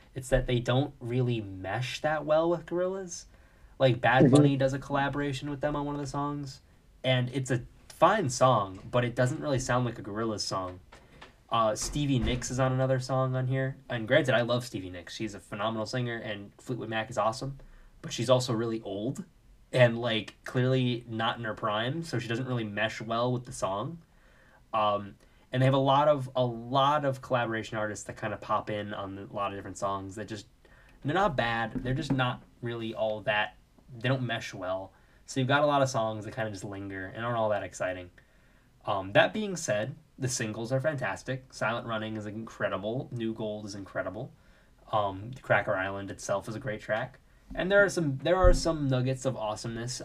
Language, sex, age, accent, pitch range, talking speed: English, male, 20-39, American, 110-135 Hz, 205 wpm